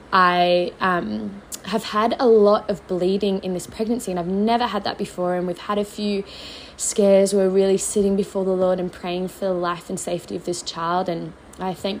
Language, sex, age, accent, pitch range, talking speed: English, female, 20-39, Australian, 180-200 Hz, 210 wpm